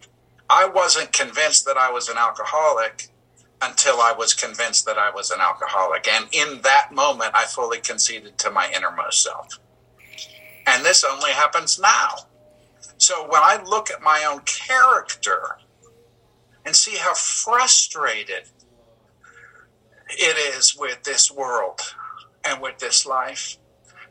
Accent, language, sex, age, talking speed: American, English, male, 60-79, 135 wpm